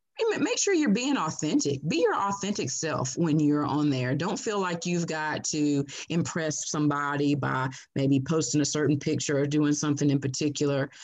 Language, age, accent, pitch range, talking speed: English, 30-49, American, 145-165 Hz, 175 wpm